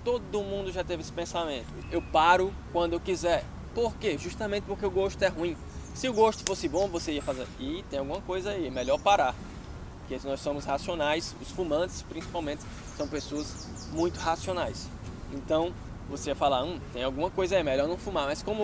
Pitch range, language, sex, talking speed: 135-185 Hz, Portuguese, male, 195 wpm